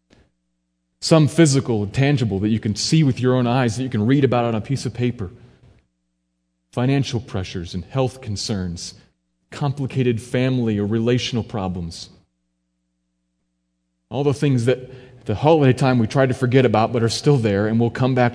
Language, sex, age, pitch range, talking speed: English, male, 30-49, 85-135 Hz, 170 wpm